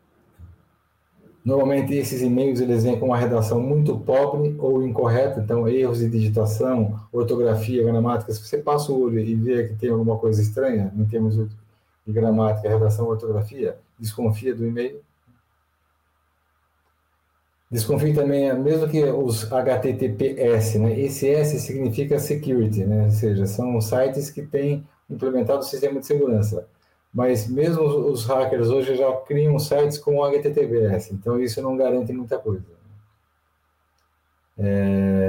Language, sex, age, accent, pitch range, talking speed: Portuguese, male, 20-39, Brazilian, 110-130 Hz, 135 wpm